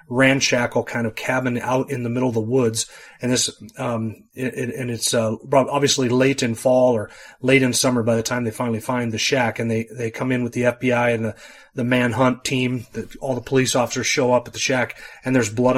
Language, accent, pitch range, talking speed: English, American, 115-130 Hz, 235 wpm